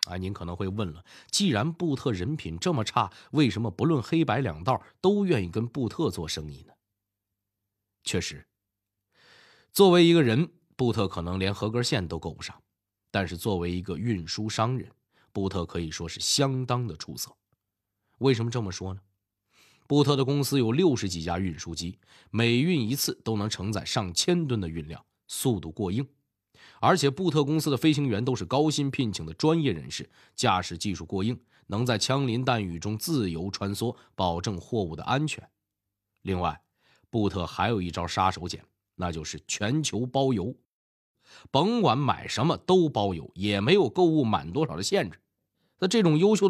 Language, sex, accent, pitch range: Chinese, male, native, 95-135 Hz